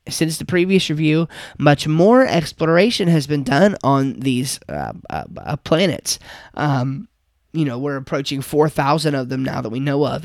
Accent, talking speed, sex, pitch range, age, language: American, 170 wpm, male, 140-180 Hz, 20-39, English